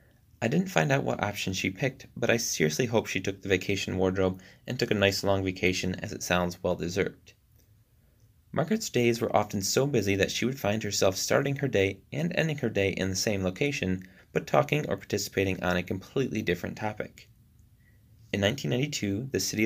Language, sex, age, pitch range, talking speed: English, male, 30-49, 95-115 Hz, 190 wpm